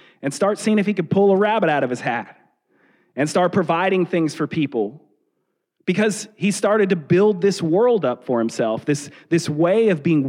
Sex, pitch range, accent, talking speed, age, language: male, 155-205 Hz, American, 200 wpm, 30-49, English